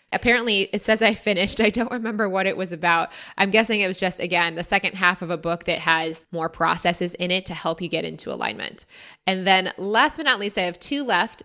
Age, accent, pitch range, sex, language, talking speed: 20-39, American, 175-225 Hz, female, English, 240 wpm